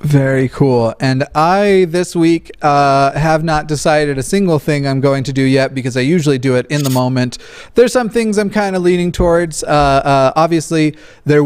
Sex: male